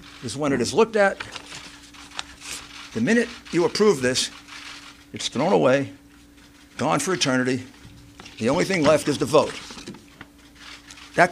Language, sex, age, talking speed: English, male, 60-79, 135 wpm